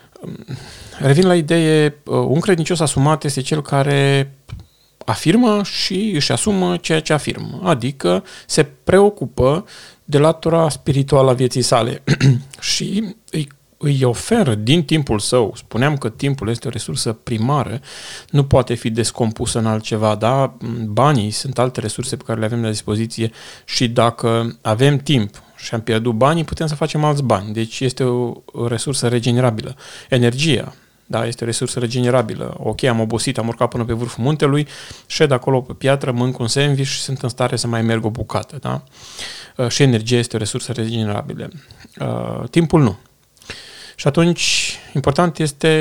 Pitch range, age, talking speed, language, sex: 115-150 Hz, 30-49, 155 wpm, Romanian, male